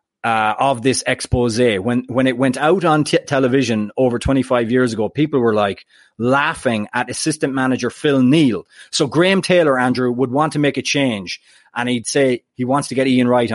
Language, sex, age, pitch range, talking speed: English, male, 30-49, 125-155 Hz, 190 wpm